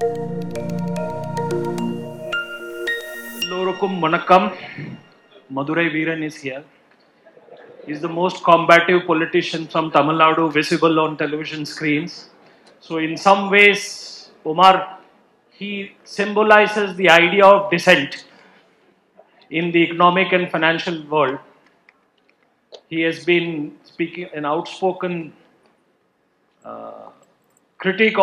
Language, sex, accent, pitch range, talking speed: English, male, Indian, 150-180 Hz, 95 wpm